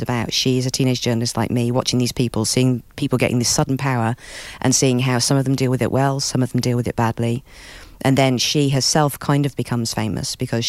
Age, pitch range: 40-59, 120-130 Hz